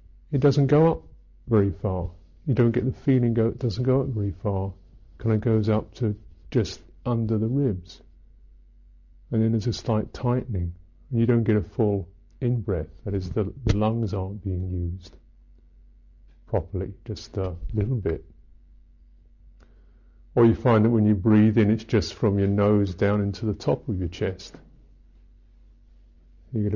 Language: English